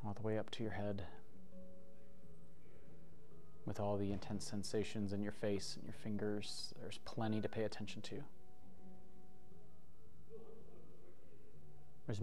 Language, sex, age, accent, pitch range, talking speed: English, male, 30-49, American, 90-110 Hz, 125 wpm